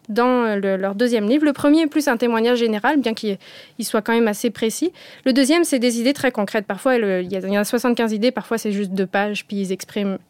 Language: French